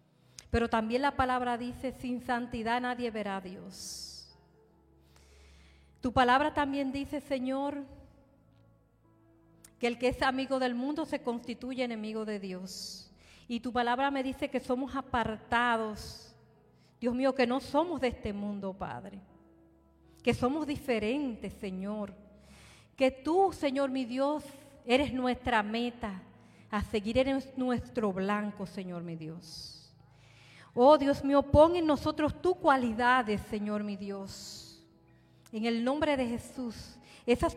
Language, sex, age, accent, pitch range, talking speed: Spanish, female, 40-59, American, 210-265 Hz, 130 wpm